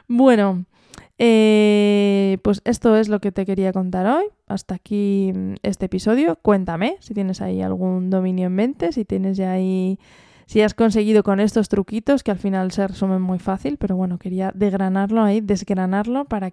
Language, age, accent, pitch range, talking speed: Spanish, 20-39, Spanish, 190-230 Hz, 170 wpm